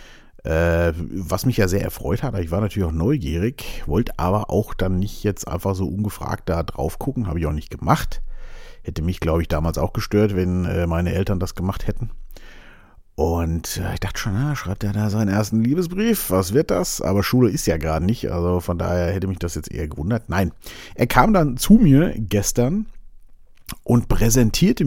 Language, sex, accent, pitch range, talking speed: German, male, German, 90-120 Hz, 190 wpm